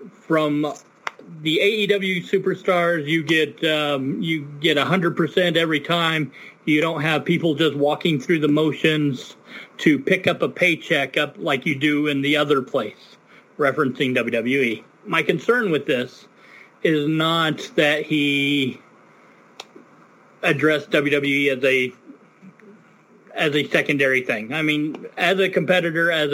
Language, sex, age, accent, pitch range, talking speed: English, male, 40-59, American, 145-175 Hz, 135 wpm